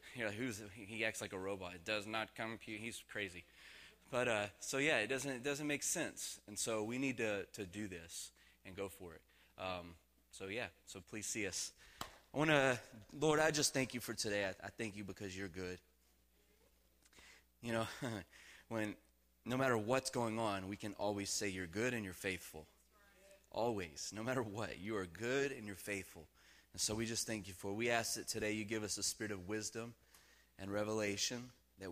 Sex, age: male, 20-39